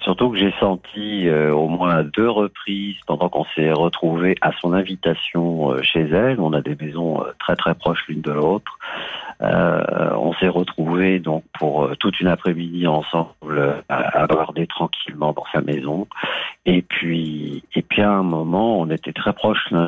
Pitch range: 80-105 Hz